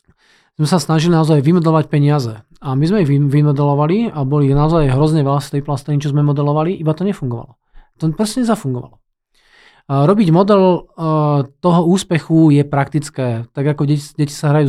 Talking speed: 165 wpm